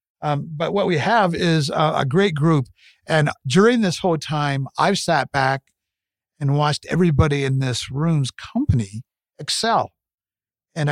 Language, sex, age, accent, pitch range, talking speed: English, male, 60-79, American, 120-155 Hz, 145 wpm